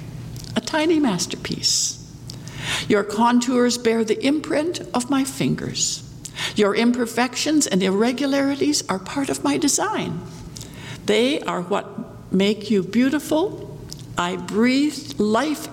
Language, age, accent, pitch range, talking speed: English, 70-89, American, 195-275 Hz, 110 wpm